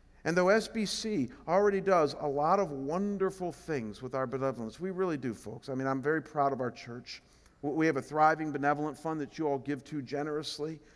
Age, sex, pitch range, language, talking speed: 50-69, male, 135-175 Hz, English, 205 wpm